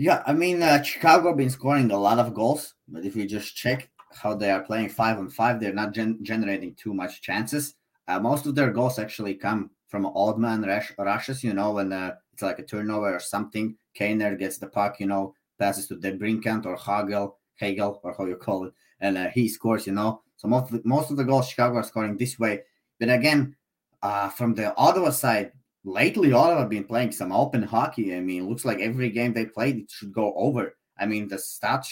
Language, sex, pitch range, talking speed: English, male, 100-125 Hz, 225 wpm